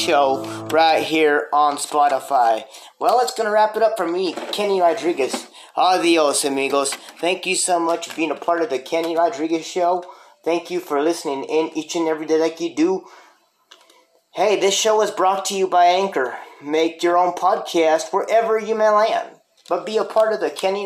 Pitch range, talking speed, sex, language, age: 160-210 Hz, 190 wpm, male, English, 30-49